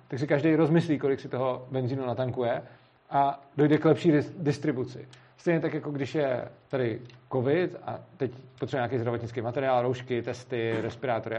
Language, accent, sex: Czech, native, male